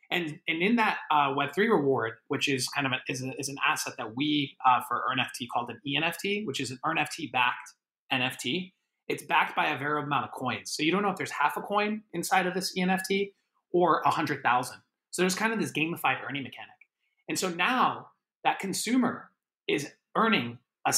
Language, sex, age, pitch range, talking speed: English, male, 30-49, 130-180 Hz, 205 wpm